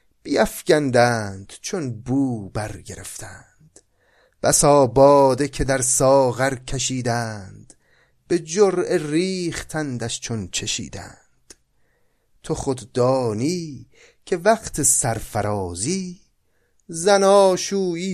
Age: 30-49